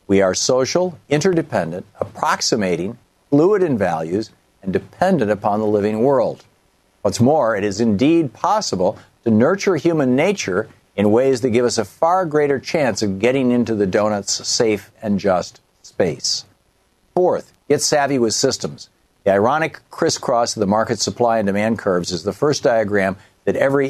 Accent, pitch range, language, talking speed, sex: American, 100-135 Hz, English, 160 wpm, male